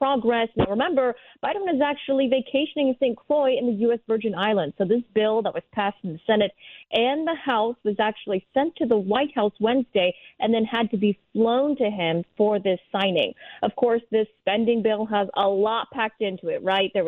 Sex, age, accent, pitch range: female, 30-49, American, 195-235 Hz